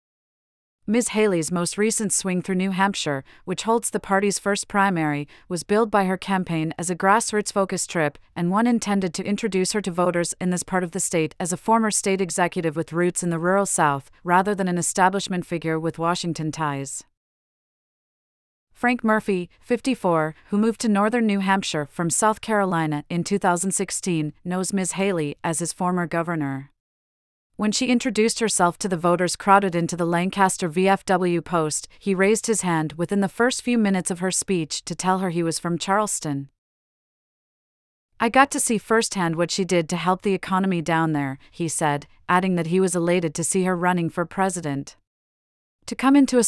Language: English